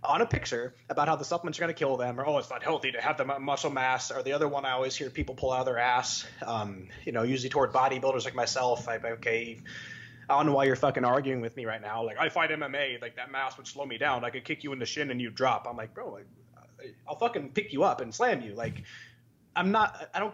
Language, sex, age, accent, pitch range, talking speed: English, male, 20-39, American, 120-150 Hz, 275 wpm